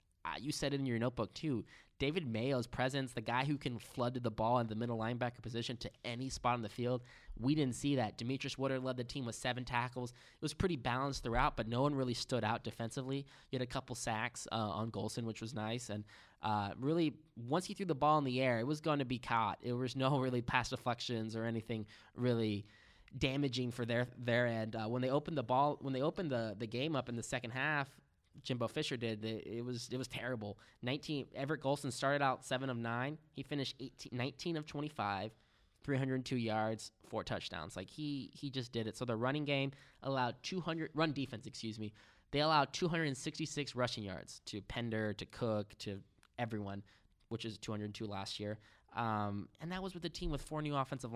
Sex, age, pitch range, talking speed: male, 10-29, 110-140 Hz, 210 wpm